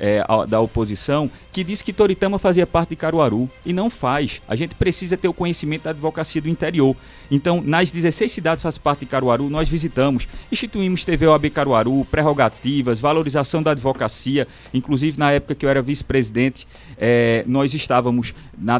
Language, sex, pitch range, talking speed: Portuguese, male, 125-170 Hz, 165 wpm